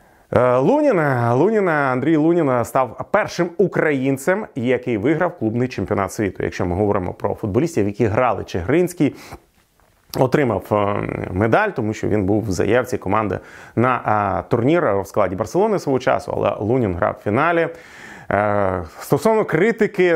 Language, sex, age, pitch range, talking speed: Ukrainian, male, 30-49, 105-160 Hz, 130 wpm